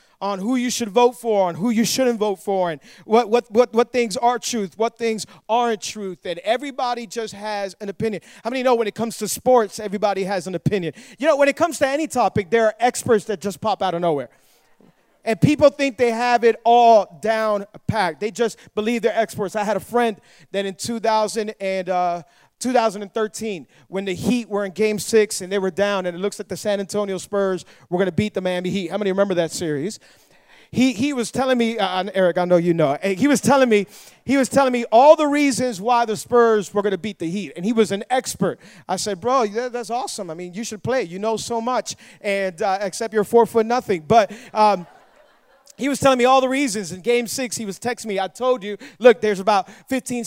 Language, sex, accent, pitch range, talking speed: English, male, American, 190-240 Hz, 235 wpm